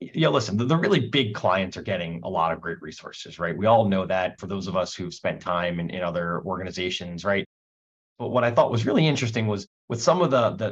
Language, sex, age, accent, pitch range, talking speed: English, male, 30-49, American, 100-130 Hz, 245 wpm